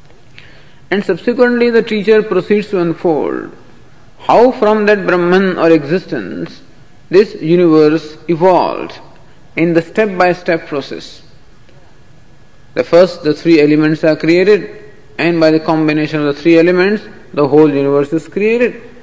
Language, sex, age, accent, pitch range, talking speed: English, male, 50-69, Indian, 155-215 Hz, 125 wpm